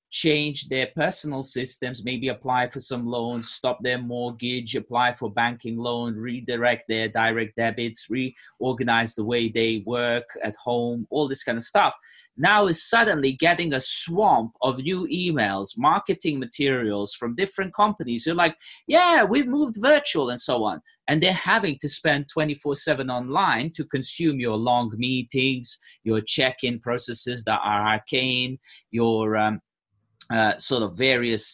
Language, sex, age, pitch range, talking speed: English, male, 30-49, 120-155 Hz, 160 wpm